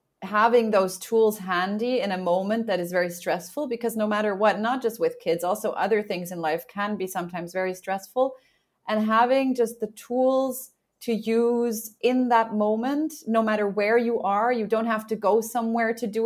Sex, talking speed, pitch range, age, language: female, 190 wpm, 190-230 Hz, 30-49, English